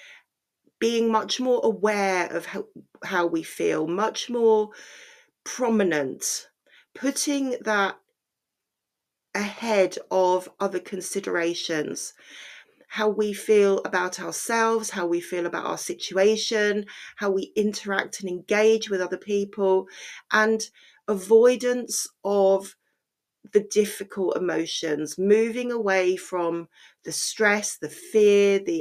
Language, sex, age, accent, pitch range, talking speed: English, female, 40-59, British, 185-230 Hz, 105 wpm